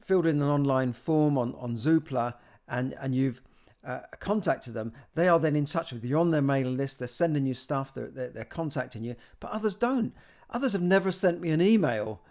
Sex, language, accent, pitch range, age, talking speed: male, English, British, 140-190 Hz, 50-69, 220 wpm